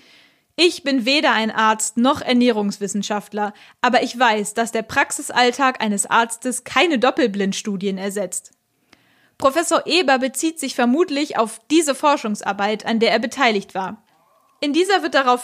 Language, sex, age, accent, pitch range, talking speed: German, female, 20-39, German, 220-275 Hz, 135 wpm